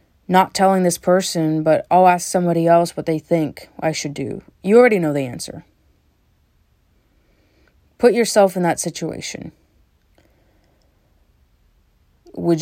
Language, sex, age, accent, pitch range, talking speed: English, female, 30-49, American, 145-200 Hz, 125 wpm